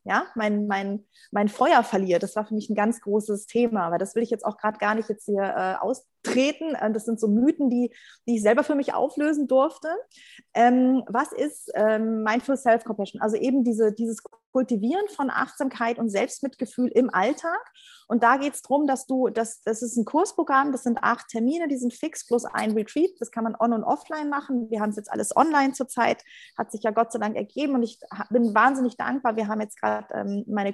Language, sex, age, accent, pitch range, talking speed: German, female, 30-49, German, 215-265 Hz, 215 wpm